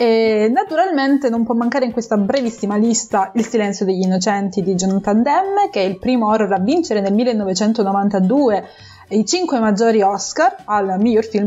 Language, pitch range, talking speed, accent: Italian, 195-245 Hz, 165 wpm, native